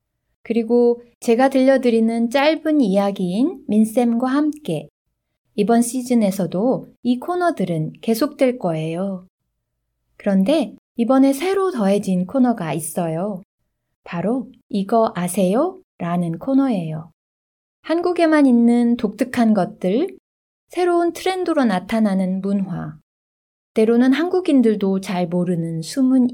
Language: Korean